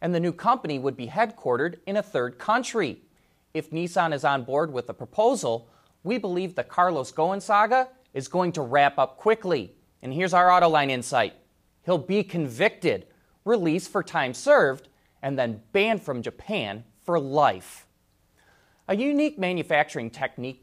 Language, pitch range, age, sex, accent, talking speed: English, 135-200 Hz, 30-49, male, American, 155 wpm